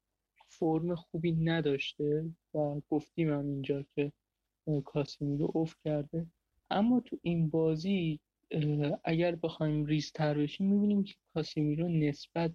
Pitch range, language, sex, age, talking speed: 145-160 Hz, Persian, male, 30-49, 120 wpm